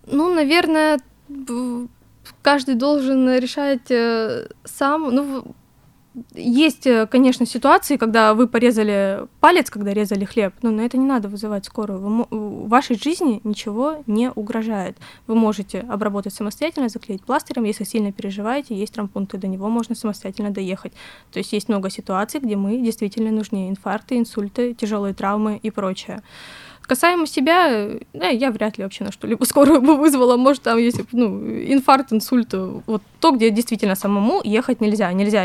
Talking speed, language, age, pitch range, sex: 145 wpm, Russian, 20-39, 205-255 Hz, female